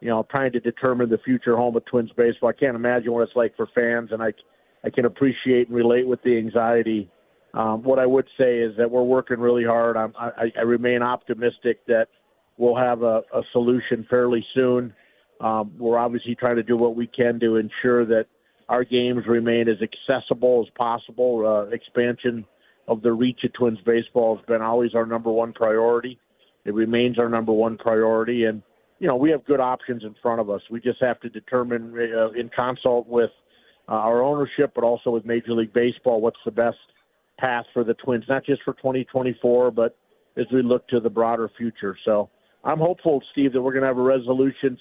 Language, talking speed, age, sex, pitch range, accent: English, 205 wpm, 50-69, male, 115-125 Hz, American